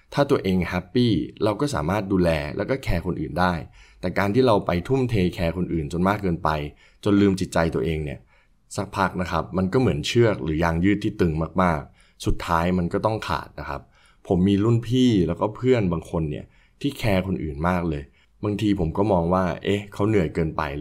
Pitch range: 80-105 Hz